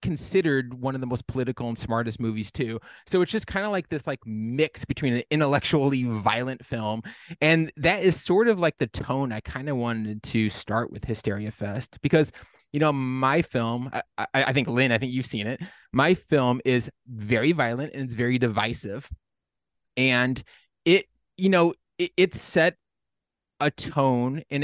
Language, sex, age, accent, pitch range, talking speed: English, male, 30-49, American, 120-160 Hz, 180 wpm